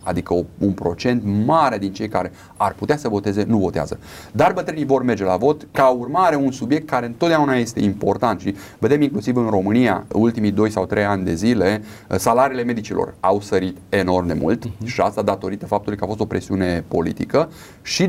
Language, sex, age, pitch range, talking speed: Romanian, male, 30-49, 100-135 Hz, 190 wpm